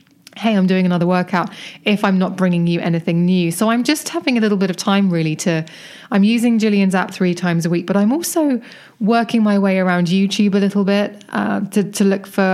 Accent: British